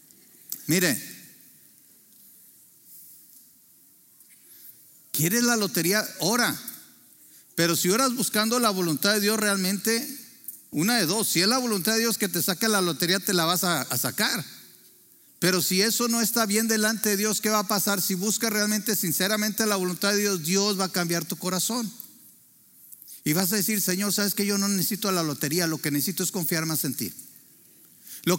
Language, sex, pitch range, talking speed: Spanish, male, 180-220 Hz, 175 wpm